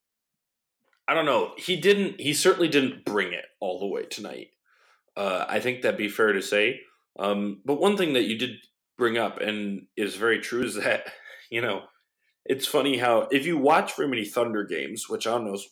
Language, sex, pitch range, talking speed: English, male, 115-180 Hz, 200 wpm